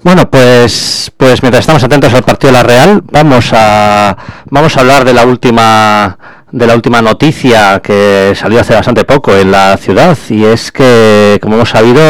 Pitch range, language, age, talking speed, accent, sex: 105-130 Hz, English, 30-49, 185 wpm, Spanish, male